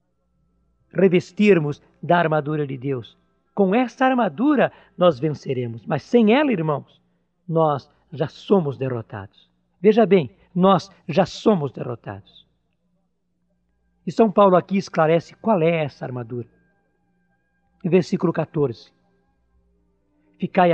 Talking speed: 105 wpm